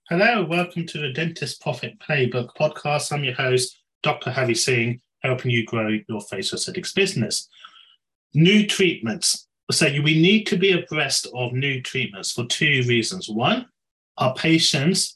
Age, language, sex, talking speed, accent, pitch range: 30-49, English, male, 150 wpm, British, 120-150 Hz